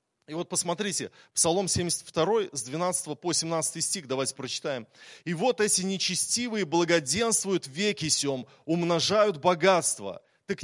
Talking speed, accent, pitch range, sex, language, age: 125 wpm, native, 140-185 Hz, male, Russian, 20-39